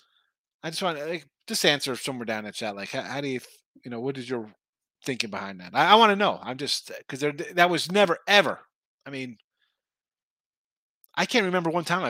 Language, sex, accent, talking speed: English, male, American, 225 wpm